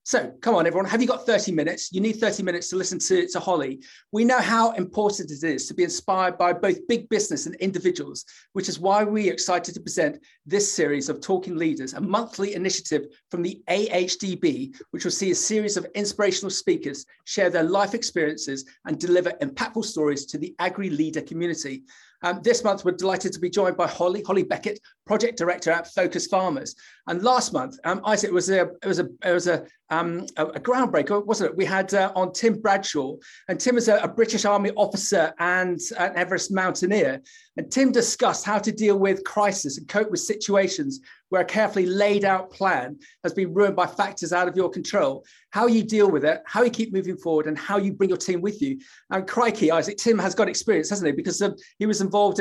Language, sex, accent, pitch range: English, male, British, 180-215 Hz